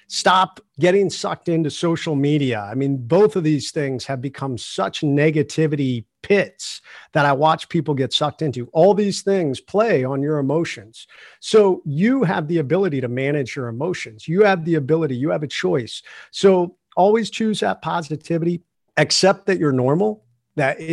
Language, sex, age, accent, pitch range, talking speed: English, male, 50-69, American, 135-175 Hz, 165 wpm